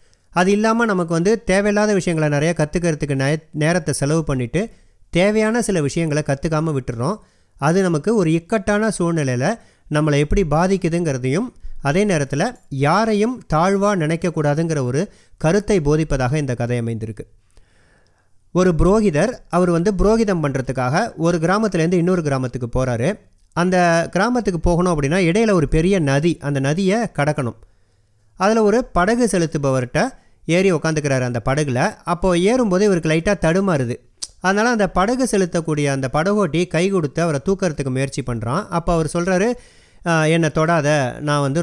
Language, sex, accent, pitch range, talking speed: Tamil, male, native, 140-190 Hz, 130 wpm